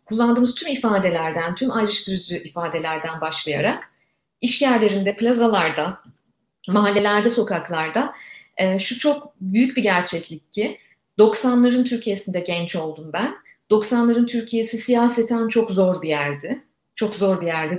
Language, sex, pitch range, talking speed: Turkish, female, 175-235 Hz, 120 wpm